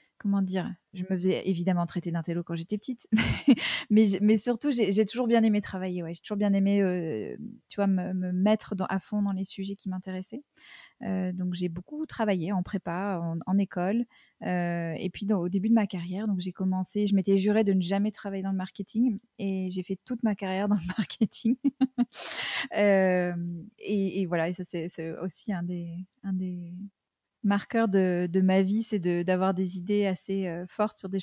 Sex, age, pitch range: female, 20-39, 185-215 Hz